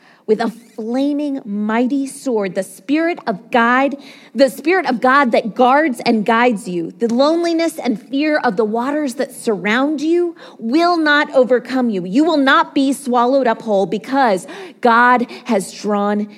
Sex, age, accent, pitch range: female, 30-49, American, 210-255 Hz